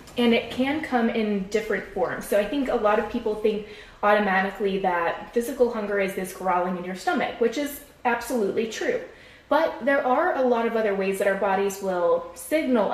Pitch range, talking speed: 195-235 Hz, 195 wpm